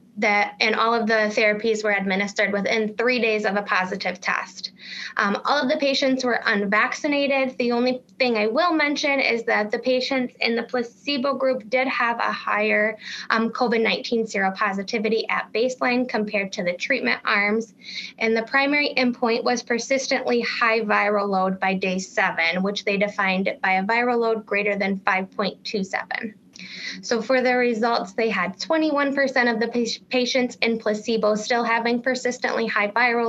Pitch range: 205-250 Hz